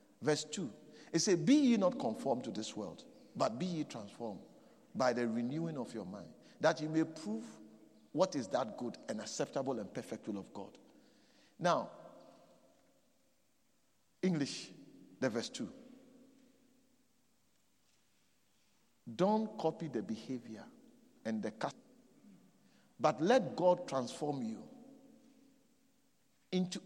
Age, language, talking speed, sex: 50-69, English, 120 wpm, male